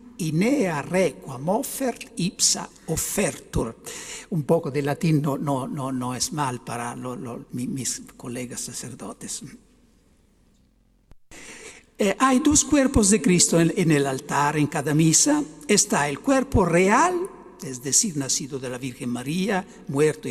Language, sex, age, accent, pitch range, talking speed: Spanish, male, 60-79, Italian, 155-245 Hz, 125 wpm